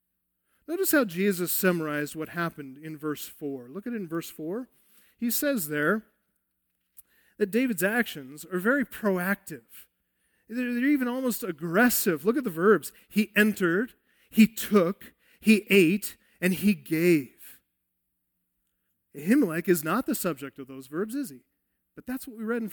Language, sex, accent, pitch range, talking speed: English, male, American, 150-230 Hz, 150 wpm